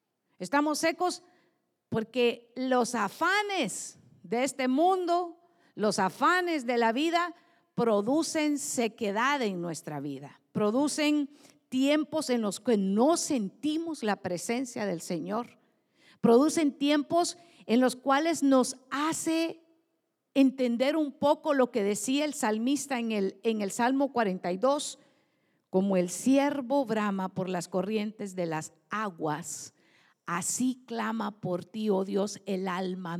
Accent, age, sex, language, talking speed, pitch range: American, 50-69, female, Spanish, 120 wpm, 215-300 Hz